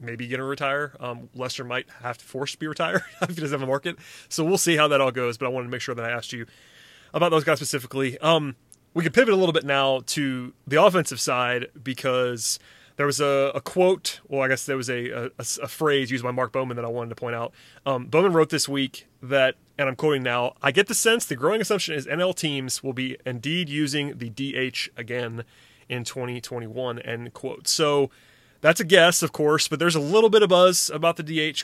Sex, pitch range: male, 125-160 Hz